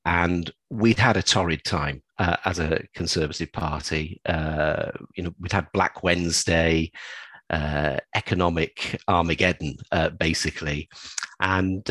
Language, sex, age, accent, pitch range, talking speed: English, male, 40-59, British, 85-110 Hz, 120 wpm